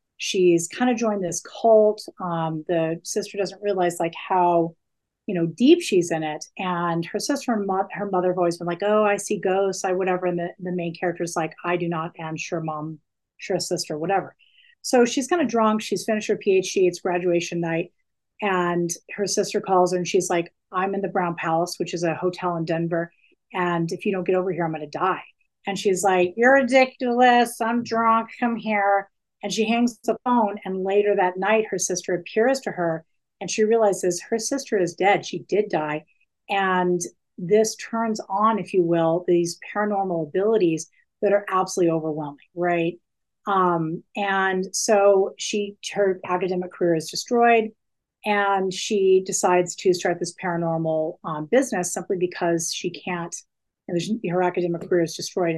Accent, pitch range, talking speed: American, 175-210 Hz, 180 wpm